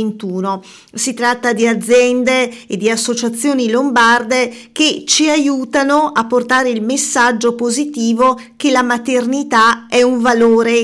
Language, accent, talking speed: Italian, native, 120 wpm